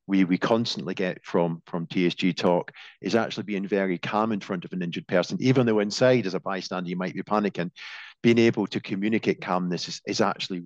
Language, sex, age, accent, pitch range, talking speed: English, male, 50-69, British, 90-105 Hz, 210 wpm